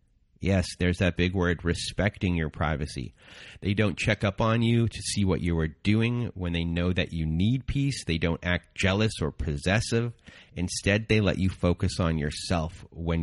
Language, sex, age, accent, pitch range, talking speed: English, male, 30-49, American, 80-100 Hz, 185 wpm